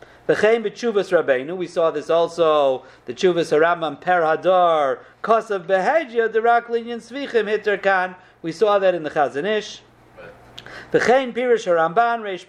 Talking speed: 60 wpm